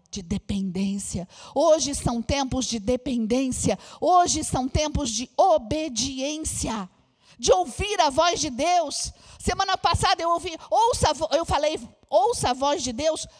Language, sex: Portuguese, female